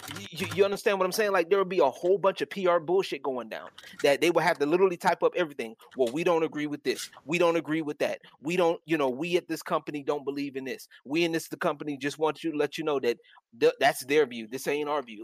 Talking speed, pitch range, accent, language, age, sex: 280 wpm, 155-205 Hz, American, English, 30-49, male